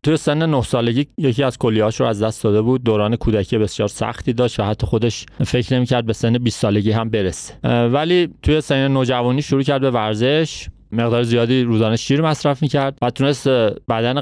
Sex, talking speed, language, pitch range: male, 195 wpm, Persian, 110-140 Hz